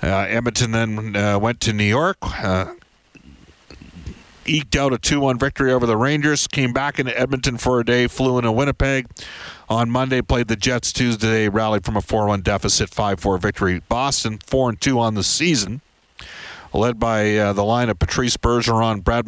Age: 50-69